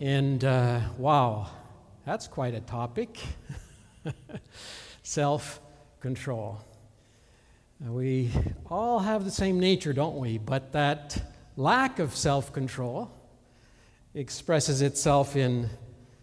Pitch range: 115-160 Hz